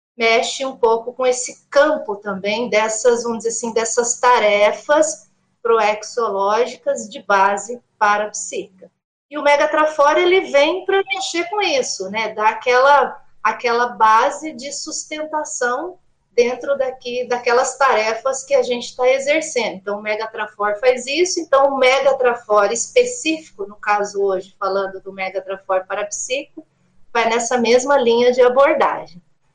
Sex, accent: female, Brazilian